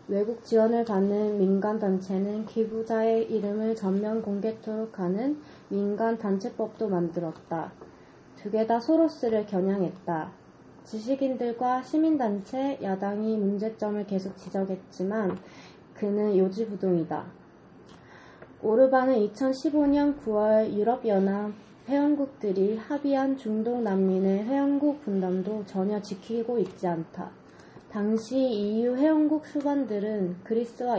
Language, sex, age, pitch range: Korean, female, 20-39, 200-265 Hz